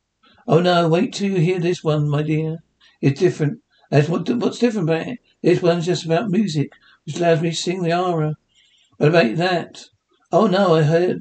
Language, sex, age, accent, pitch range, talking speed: English, male, 60-79, British, 155-190 Hz, 200 wpm